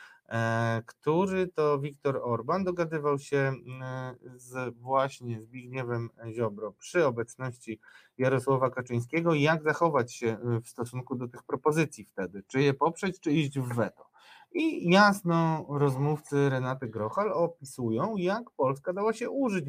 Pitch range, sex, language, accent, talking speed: 115-150 Hz, male, Polish, native, 125 wpm